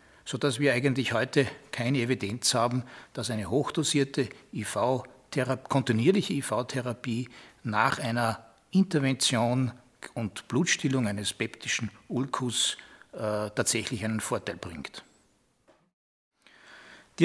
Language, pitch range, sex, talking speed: German, 120-145 Hz, male, 95 wpm